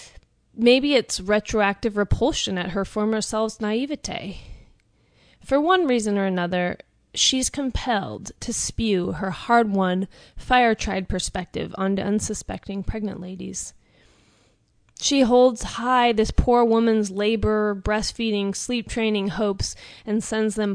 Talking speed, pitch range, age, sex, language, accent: 115 wpm, 185-230 Hz, 30-49, female, English, American